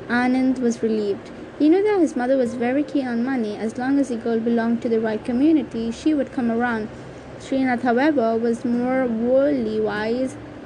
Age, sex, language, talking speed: 20-39, female, English, 185 wpm